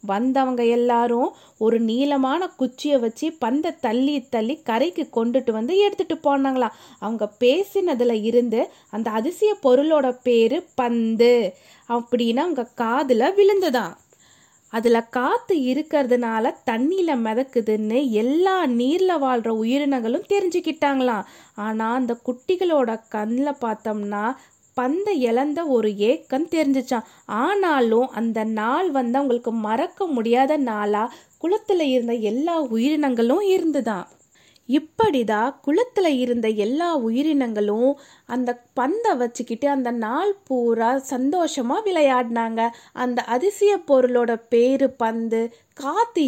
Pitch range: 235-305 Hz